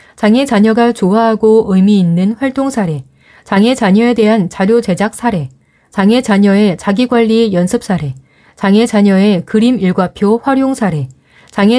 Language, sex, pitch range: Korean, female, 185-230 Hz